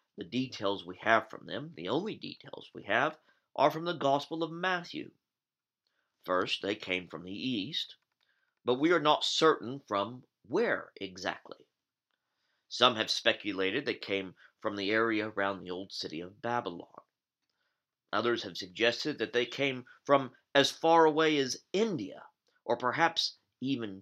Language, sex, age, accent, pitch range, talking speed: English, male, 40-59, American, 110-155 Hz, 150 wpm